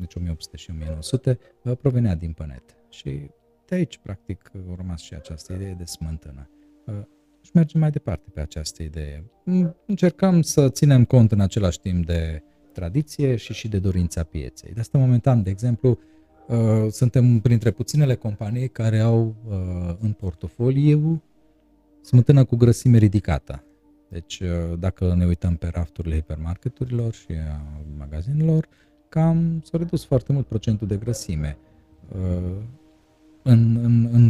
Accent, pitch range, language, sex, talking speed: native, 85-120 Hz, Romanian, male, 135 wpm